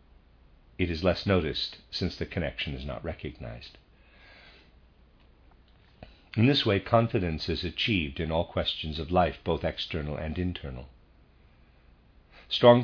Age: 50-69